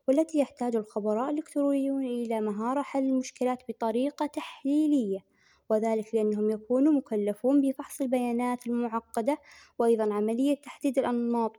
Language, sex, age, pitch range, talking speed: Arabic, female, 20-39, 215-270 Hz, 110 wpm